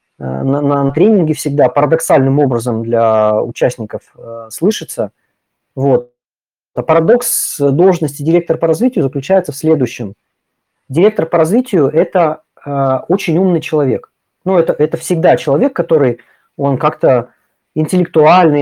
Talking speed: 110 wpm